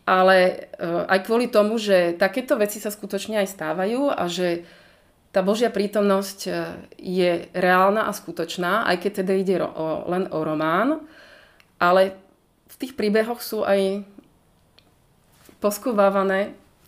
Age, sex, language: 30-49, female, Slovak